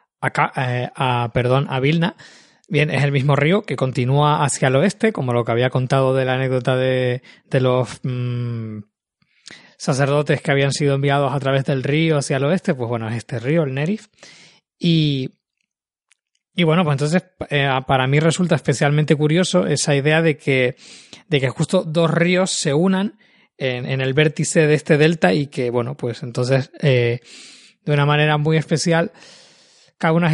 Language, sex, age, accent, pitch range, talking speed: Spanish, male, 20-39, Spanish, 135-165 Hz, 175 wpm